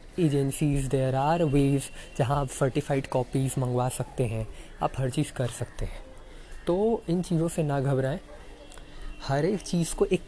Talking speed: 165 wpm